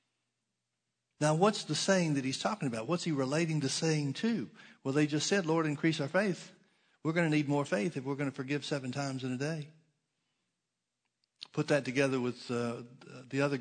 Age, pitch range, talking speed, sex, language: 60-79, 130-170 Hz, 200 wpm, male, English